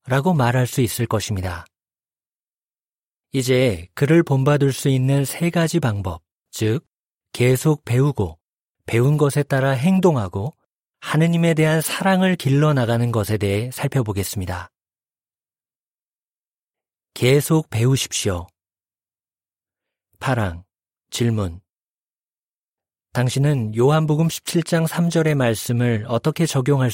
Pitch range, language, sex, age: 110-145 Hz, Korean, male, 40-59